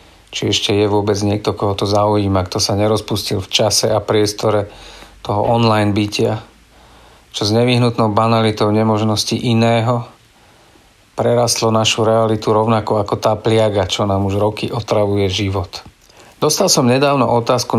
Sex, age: male, 40-59